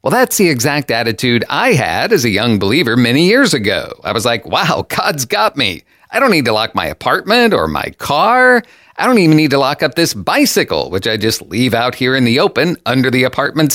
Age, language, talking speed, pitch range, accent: 50-69, English, 225 wpm, 110-165 Hz, American